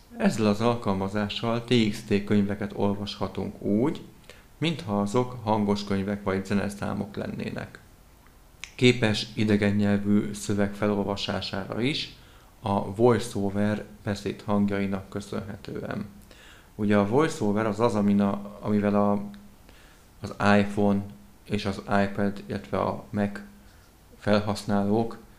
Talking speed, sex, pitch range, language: 95 wpm, male, 100-110 Hz, Hungarian